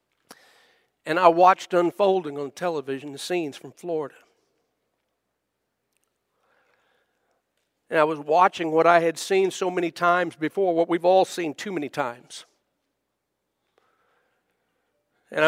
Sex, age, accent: male, 60-79, American